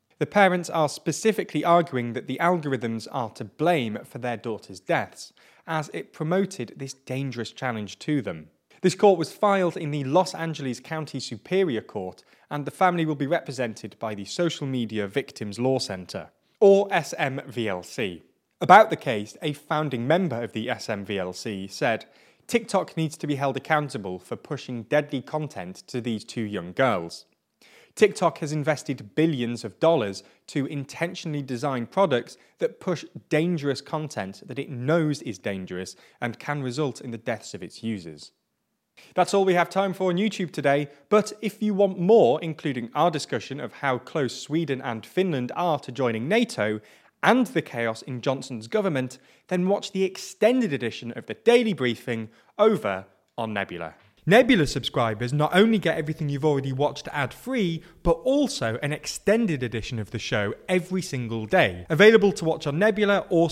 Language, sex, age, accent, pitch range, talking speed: English, male, 20-39, British, 120-180 Hz, 165 wpm